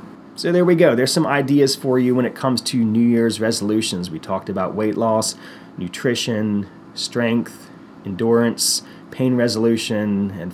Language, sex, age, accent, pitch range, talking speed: English, male, 30-49, American, 105-135 Hz, 155 wpm